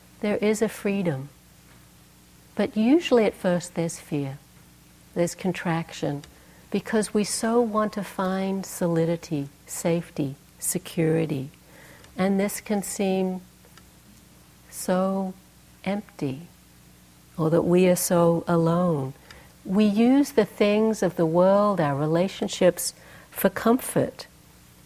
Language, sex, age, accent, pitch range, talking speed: English, female, 60-79, American, 150-195 Hz, 105 wpm